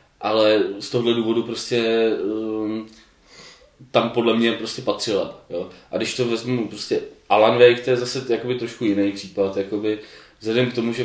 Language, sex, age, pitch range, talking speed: Czech, male, 20-39, 105-115 Hz, 170 wpm